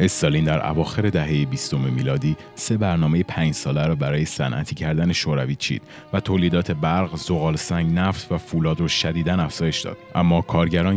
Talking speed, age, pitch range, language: 165 wpm, 30-49, 75-90 Hz, Persian